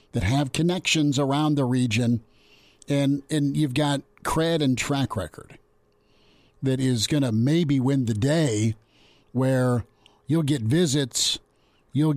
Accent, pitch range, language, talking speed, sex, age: American, 120-150 Hz, English, 135 wpm, male, 50-69